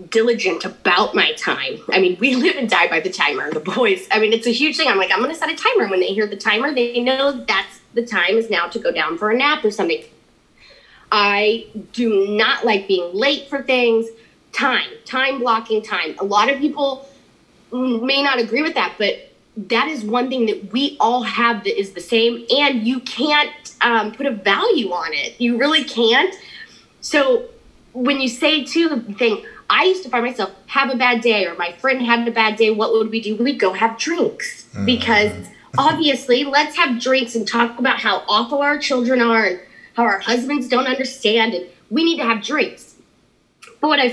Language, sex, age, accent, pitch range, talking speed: English, female, 20-39, American, 220-280 Hz, 210 wpm